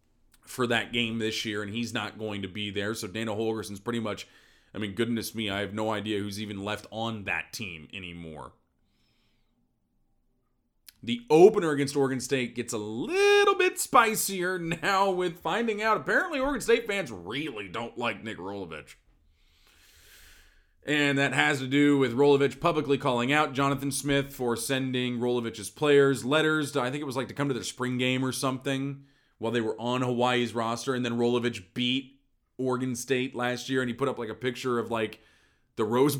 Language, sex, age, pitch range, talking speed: English, male, 30-49, 110-145 Hz, 180 wpm